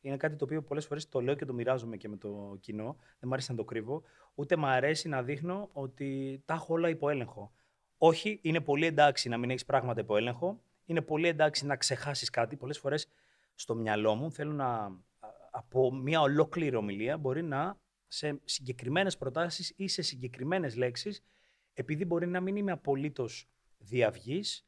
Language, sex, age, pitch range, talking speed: Greek, male, 30-49, 125-160 Hz, 180 wpm